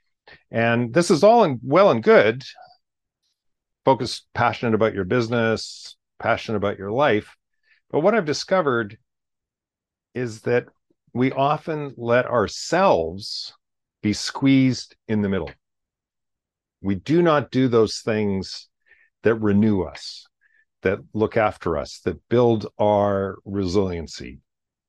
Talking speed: 115 wpm